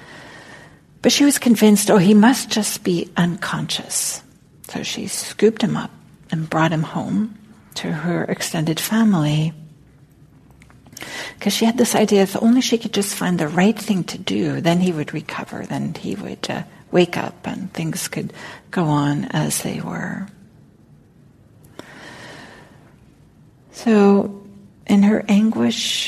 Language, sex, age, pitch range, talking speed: English, female, 60-79, 170-215 Hz, 140 wpm